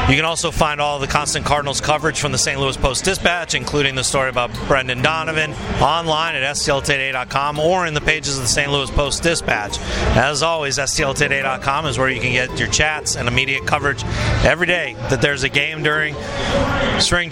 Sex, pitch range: male, 135-165 Hz